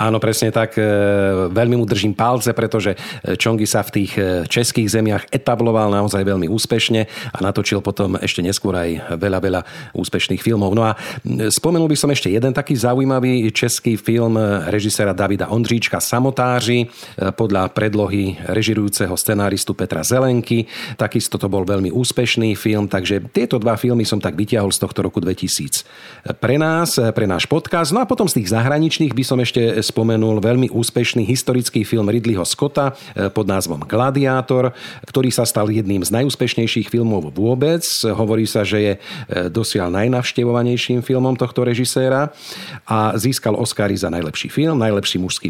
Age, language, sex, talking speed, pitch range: 40-59, Slovak, male, 150 wpm, 100-125 Hz